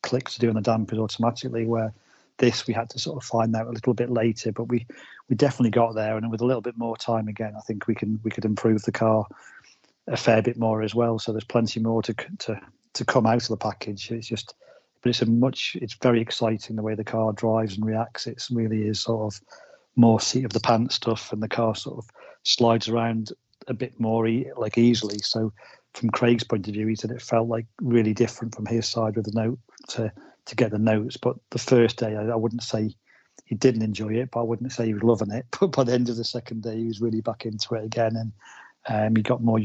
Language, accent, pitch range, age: English, British, 110-120 Hz, 40-59